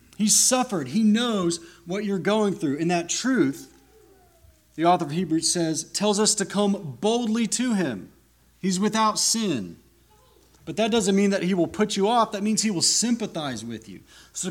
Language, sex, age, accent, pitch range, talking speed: English, male, 30-49, American, 120-190 Hz, 180 wpm